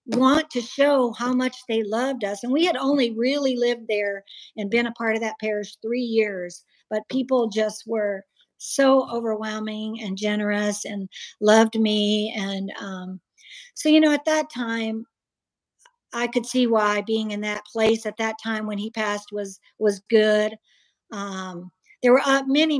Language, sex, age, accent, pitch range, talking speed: English, female, 50-69, American, 210-250 Hz, 170 wpm